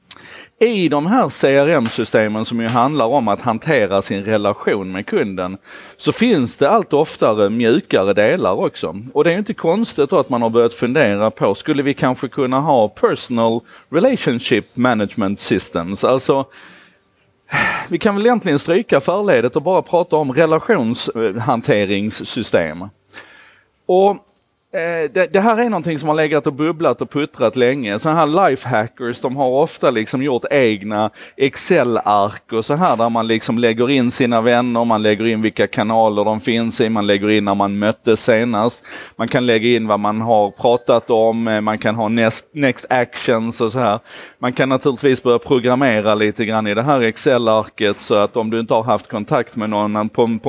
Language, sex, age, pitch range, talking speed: Swedish, male, 30-49, 110-145 Hz, 170 wpm